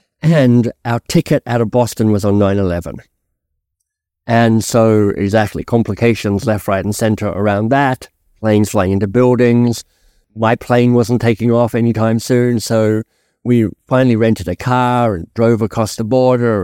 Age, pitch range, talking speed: 50-69, 100-120 Hz, 150 wpm